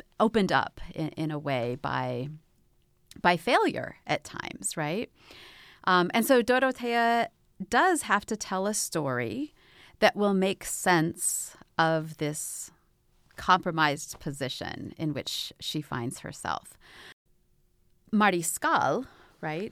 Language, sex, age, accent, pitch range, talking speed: English, female, 30-49, American, 150-200 Hz, 115 wpm